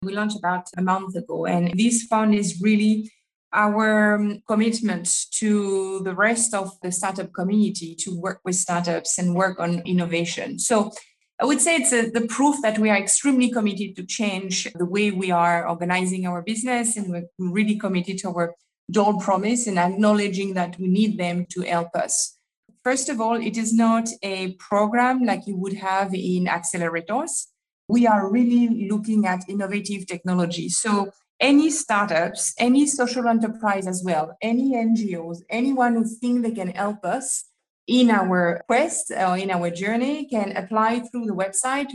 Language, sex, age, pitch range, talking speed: English, female, 20-39, 185-230 Hz, 165 wpm